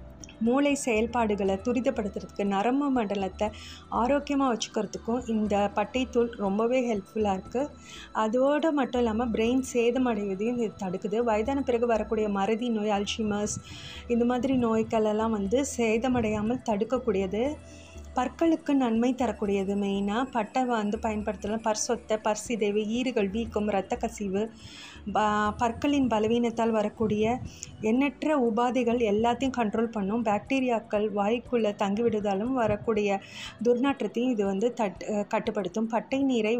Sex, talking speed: female, 100 wpm